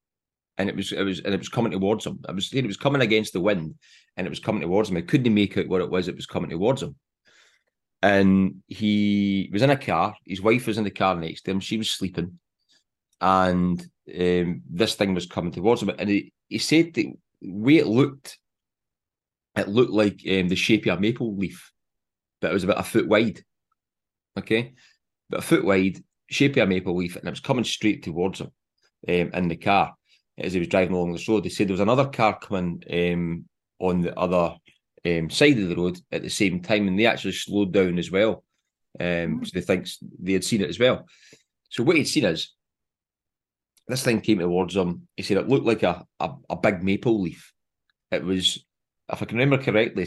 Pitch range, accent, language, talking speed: 90-110 Hz, British, English, 215 wpm